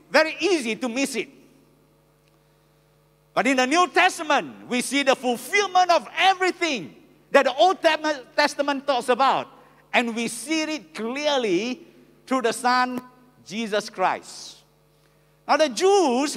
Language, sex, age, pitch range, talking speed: English, male, 50-69, 250-340 Hz, 130 wpm